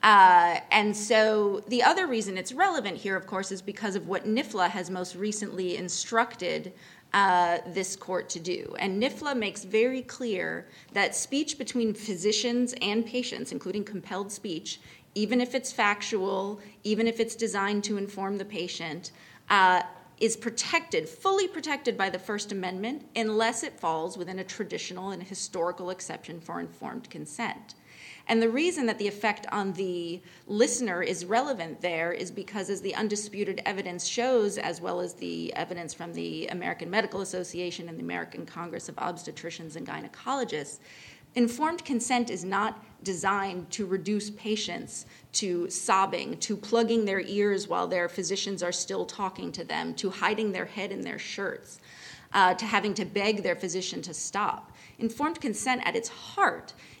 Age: 30-49